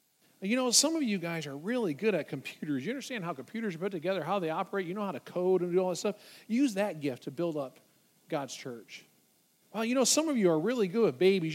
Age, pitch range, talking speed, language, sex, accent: 40-59, 180-235 Hz, 260 wpm, English, male, American